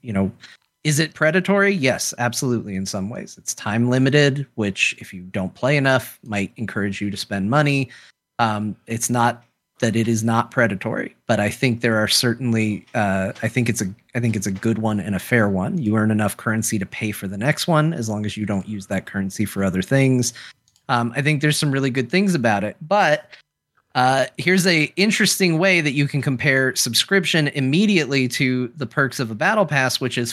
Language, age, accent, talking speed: English, 30-49, American, 210 wpm